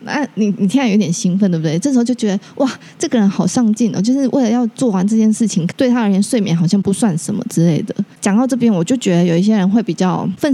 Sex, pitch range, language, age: female, 185-240 Hz, Chinese, 20-39